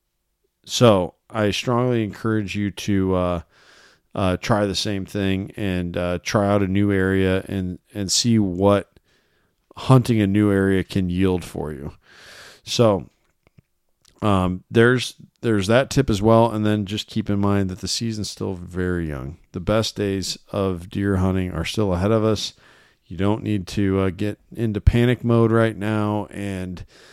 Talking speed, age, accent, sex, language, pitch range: 165 wpm, 40-59, American, male, English, 90-105 Hz